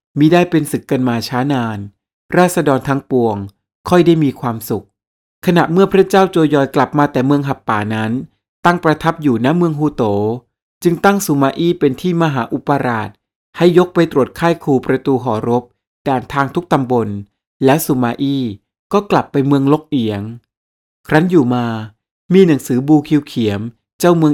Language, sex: Thai, male